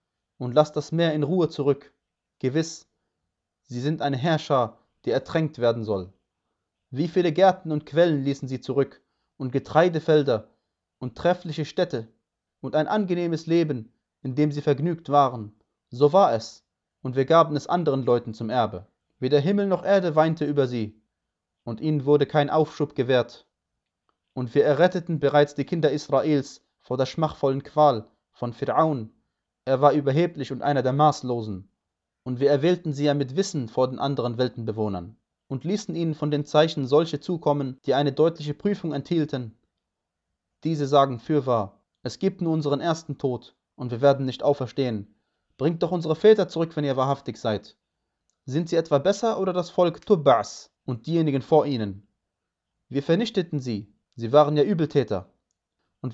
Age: 30-49